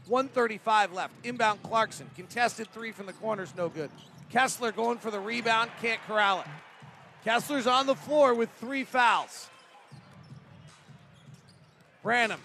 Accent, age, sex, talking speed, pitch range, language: American, 40-59, male, 130 wpm, 185-240 Hz, English